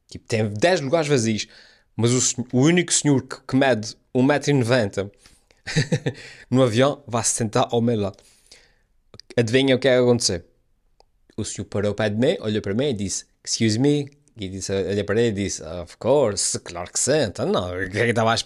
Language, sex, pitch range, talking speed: Portuguese, male, 110-130 Hz, 170 wpm